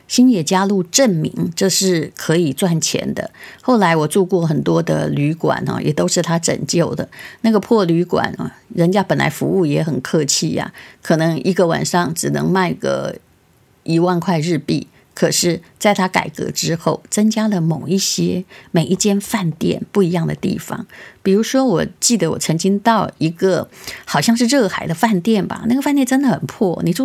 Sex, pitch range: female, 165-210 Hz